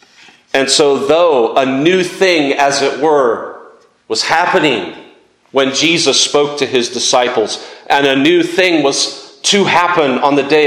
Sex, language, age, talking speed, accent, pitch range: male, English, 40-59, 150 wpm, American, 135-185 Hz